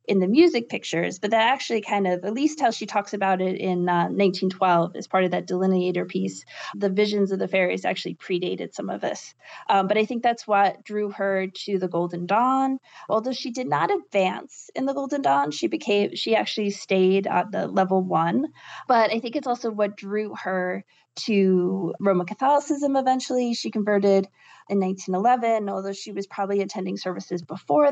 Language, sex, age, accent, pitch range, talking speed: English, female, 20-39, American, 190-225 Hz, 190 wpm